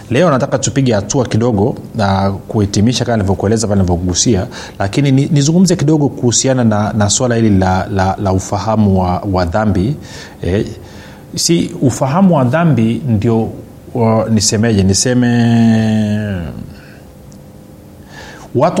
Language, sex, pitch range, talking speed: Swahili, male, 105-130 Hz, 110 wpm